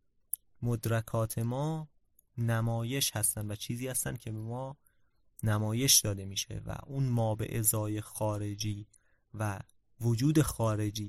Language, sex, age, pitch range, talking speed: Persian, male, 30-49, 105-135 Hz, 115 wpm